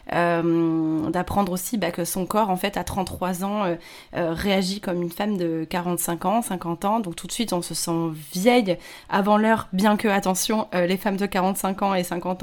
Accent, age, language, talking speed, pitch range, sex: French, 20-39, French, 210 wpm, 180-220 Hz, female